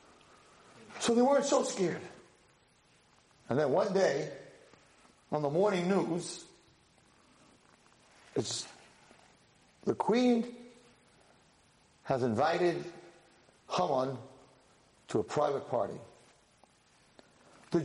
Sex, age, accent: male, 50-69, American